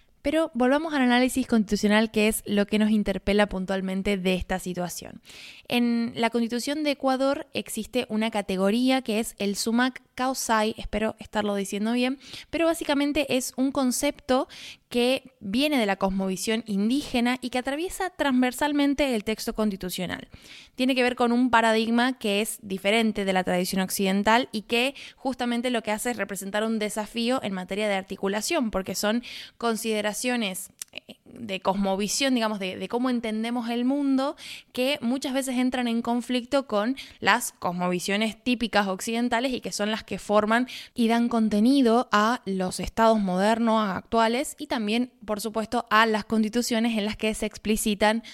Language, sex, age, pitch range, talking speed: Spanish, female, 20-39, 205-250 Hz, 155 wpm